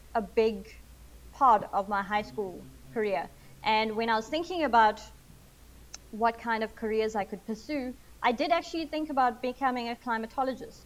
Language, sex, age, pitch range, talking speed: English, female, 30-49, 205-250 Hz, 160 wpm